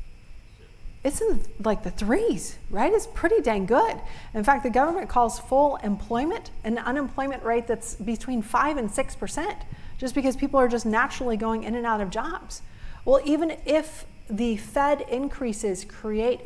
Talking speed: 160 wpm